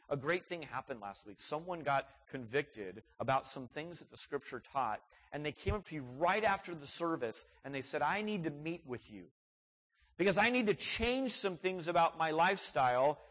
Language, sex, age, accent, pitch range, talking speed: English, male, 40-59, American, 135-210 Hz, 205 wpm